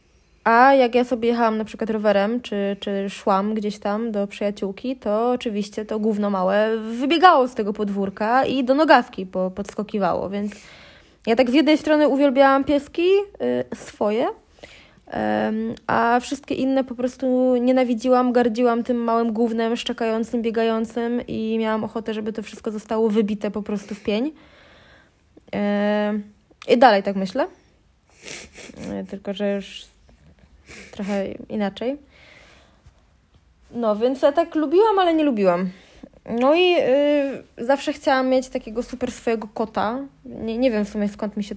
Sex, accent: female, native